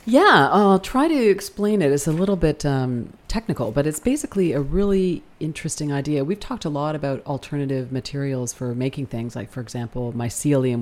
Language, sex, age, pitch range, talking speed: English, female, 40-59, 125-155 Hz, 185 wpm